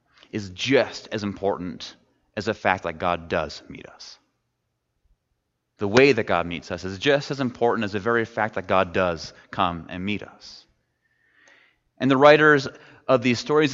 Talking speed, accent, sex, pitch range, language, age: 170 wpm, American, male, 100-130 Hz, English, 30-49